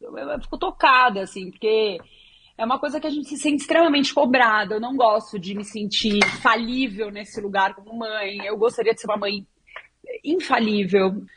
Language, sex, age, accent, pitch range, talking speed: Portuguese, female, 30-49, Brazilian, 220-295 Hz, 175 wpm